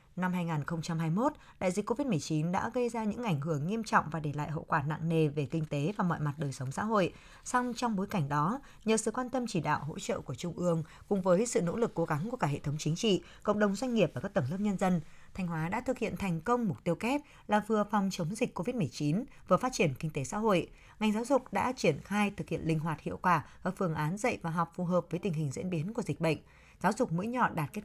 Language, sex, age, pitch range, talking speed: Vietnamese, female, 20-39, 160-220 Hz, 270 wpm